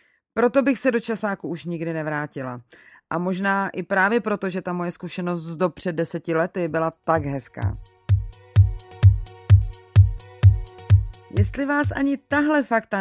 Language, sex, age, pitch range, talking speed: Czech, female, 30-49, 170-225 Hz, 140 wpm